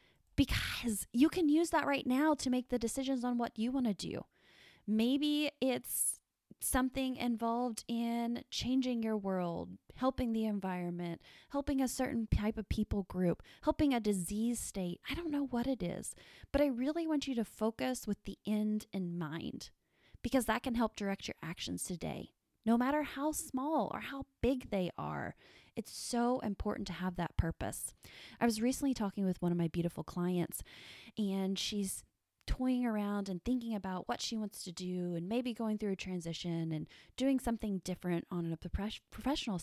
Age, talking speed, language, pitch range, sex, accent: 20-39, 175 wpm, English, 190-255 Hz, female, American